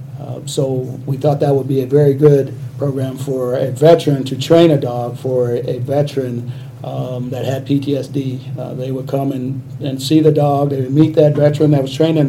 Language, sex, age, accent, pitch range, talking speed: English, male, 40-59, American, 130-145 Hz, 210 wpm